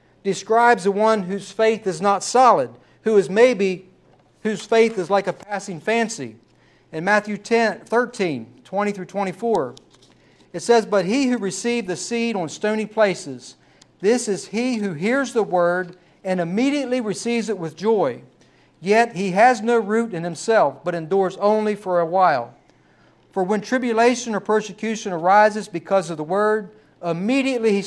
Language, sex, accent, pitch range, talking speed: English, male, American, 175-220 Hz, 160 wpm